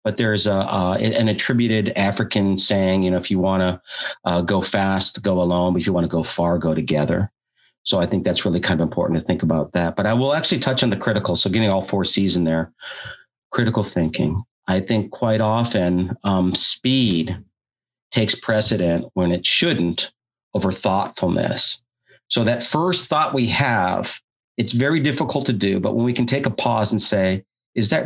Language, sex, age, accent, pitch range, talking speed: English, male, 40-59, American, 95-125 Hz, 195 wpm